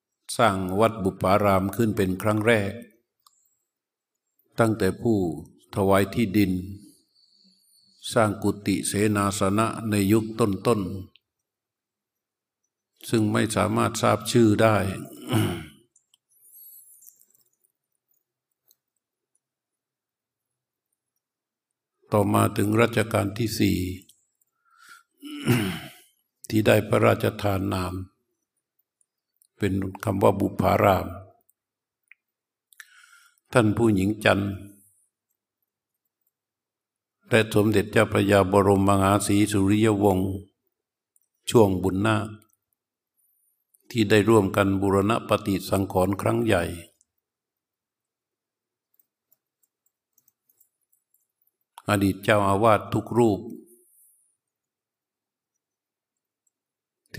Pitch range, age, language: 100-115 Hz, 60-79, Thai